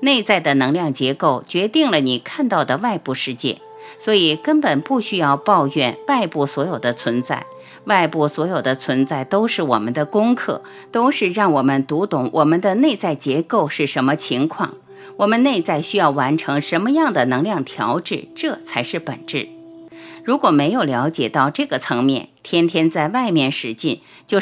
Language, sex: Chinese, female